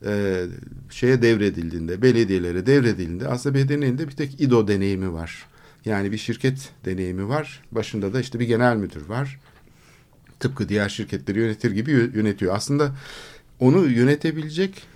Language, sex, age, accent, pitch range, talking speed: Turkish, male, 60-79, native, 105-140 Hz, 130 wpm